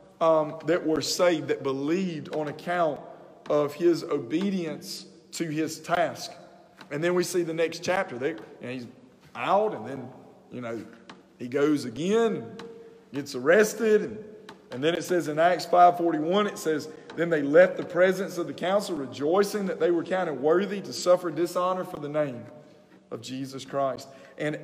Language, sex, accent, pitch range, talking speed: English, male, American, 165-215 Hz, 165 wpm